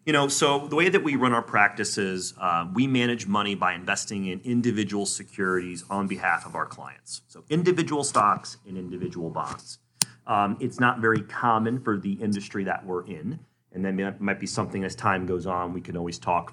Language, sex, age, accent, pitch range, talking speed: English, male, 30-49, American, 95-125 Hz, 195 wpm